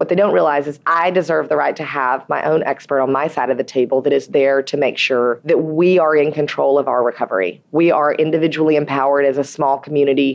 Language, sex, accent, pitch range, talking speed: English, female, American, 145-175 Hz, 245 wpm